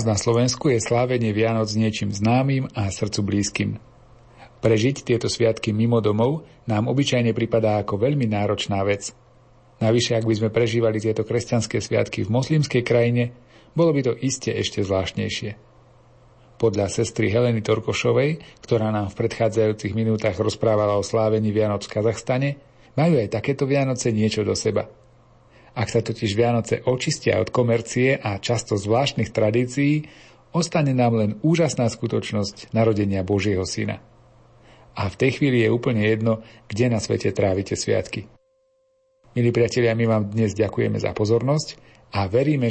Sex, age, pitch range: male, 40-59, 110-125 Hz